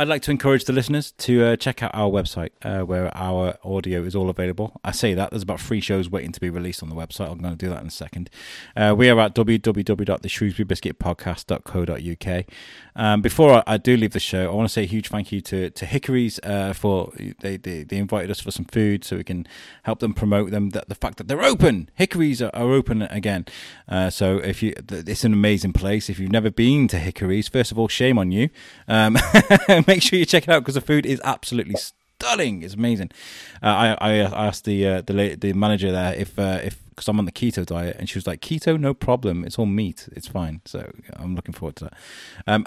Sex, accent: male, British